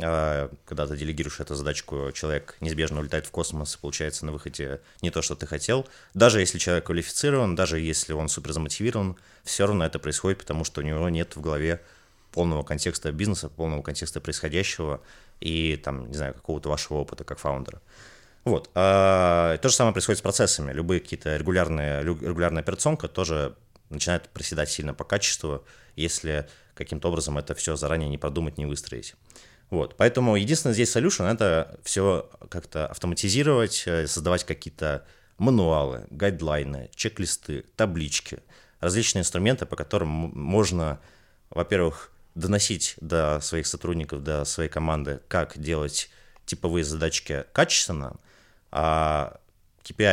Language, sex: Russian, male